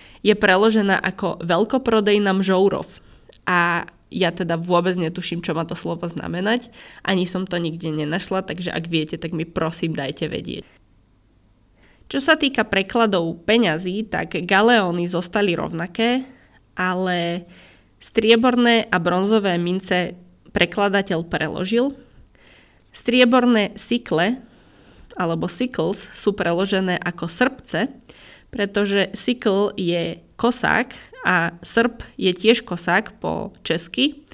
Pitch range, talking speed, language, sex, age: 170-220 Hz, 110 wpm, Slovak, female, 20-39